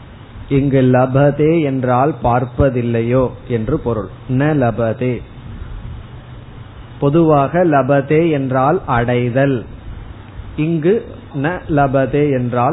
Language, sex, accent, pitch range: Tamil, male, native, 120-155 Hz